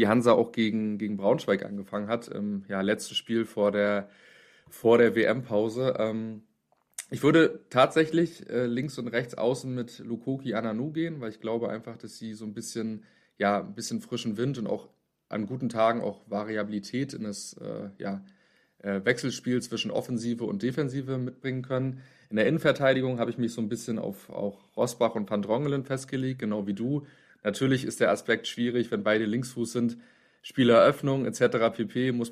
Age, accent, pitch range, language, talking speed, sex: 30-49, German, 110-130 Hz, German, 175 wpm, male